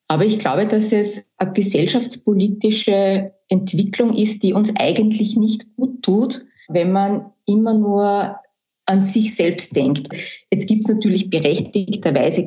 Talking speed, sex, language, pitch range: 135 wpm, female, German, 180-215 Hz